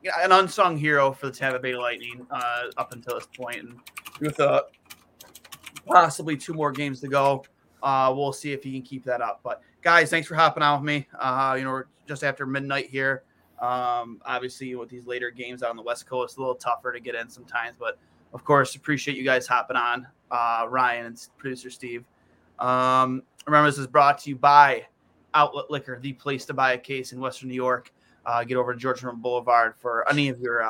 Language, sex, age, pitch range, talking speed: English, male, 20-39, 125-145 Hz, 215 wpm